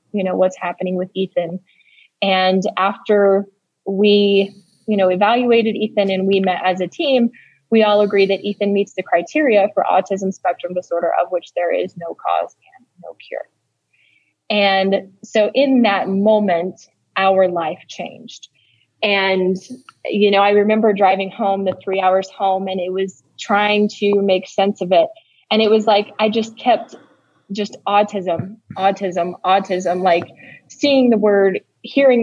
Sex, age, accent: female, 20-39, American